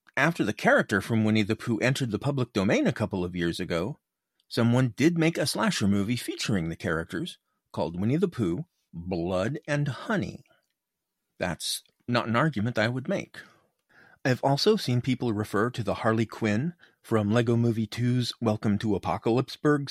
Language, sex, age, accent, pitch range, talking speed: English, male, 40-59, American, 100-145 Hz, 165 wpm